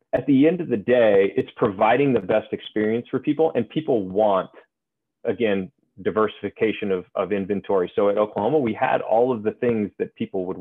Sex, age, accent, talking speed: male, 30-49, American, 185 wpm